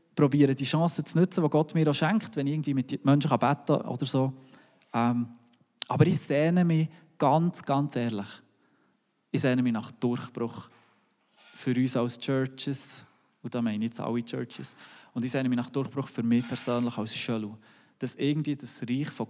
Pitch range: 130-155 Hz